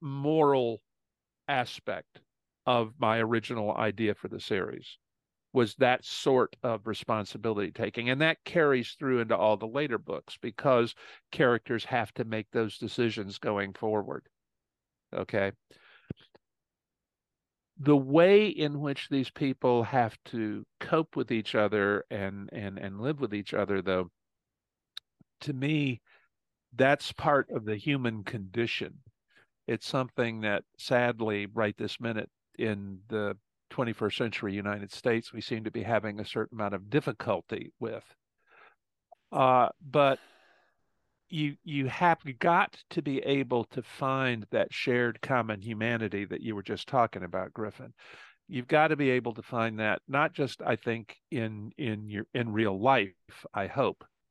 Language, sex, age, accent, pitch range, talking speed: English, male, 50-69, American, 105-130 Hz, 140 wpm